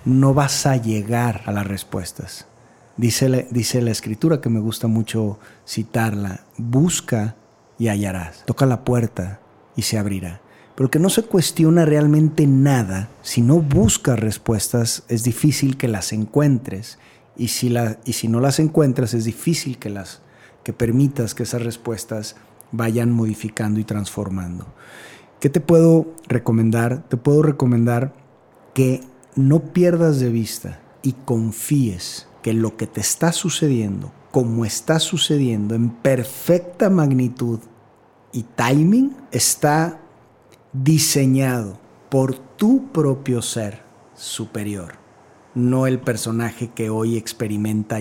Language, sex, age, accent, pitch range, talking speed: Spanish, male, 40-59, Mexican, 110-140 Hz, 130 wpm